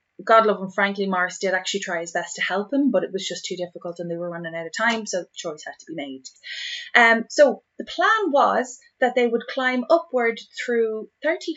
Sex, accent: female, Irish